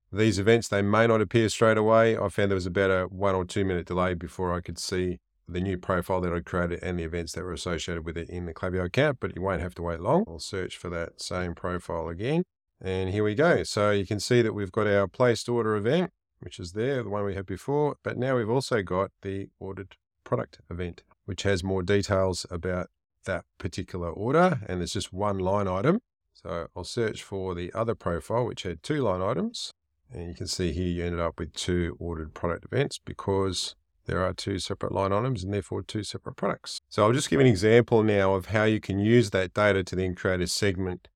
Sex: male